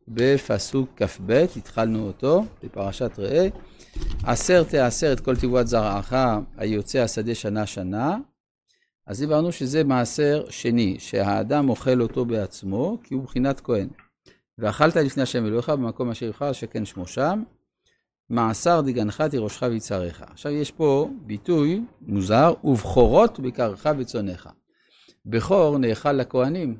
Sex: male